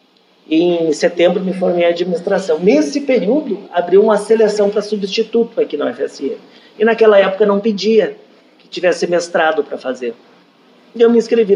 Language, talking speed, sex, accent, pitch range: Portuguese, 160 wpm, male, Brazilian, 160-215 Hz